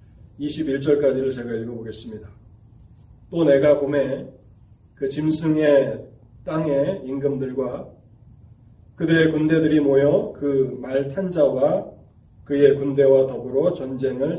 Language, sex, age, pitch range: Korean, male, 30-49, 115-145 Hz